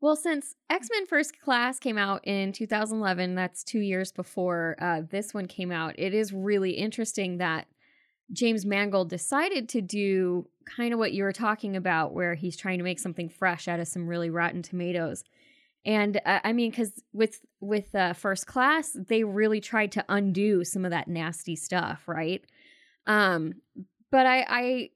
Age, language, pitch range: 10-29, English, 180-230 Hz